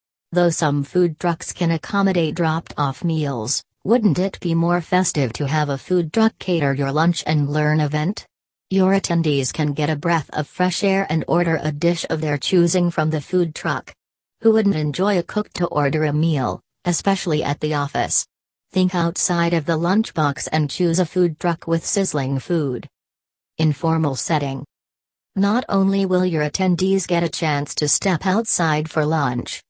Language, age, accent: English, 40-59, American